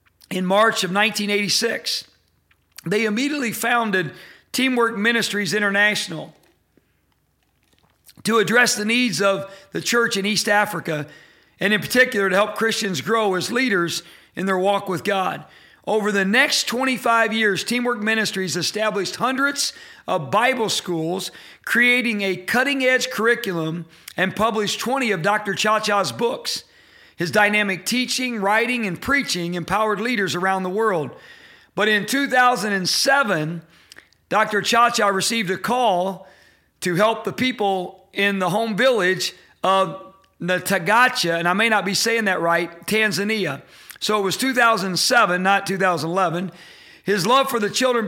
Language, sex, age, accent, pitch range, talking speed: English, male, 40-59, American, 190-230 Hz, 130 wpm